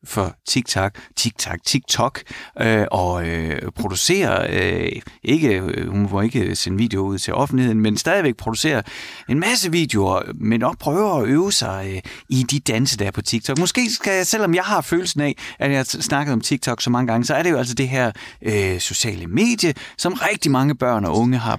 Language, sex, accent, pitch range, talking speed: Danish, male, native, 100-140 Hz, 200 wpm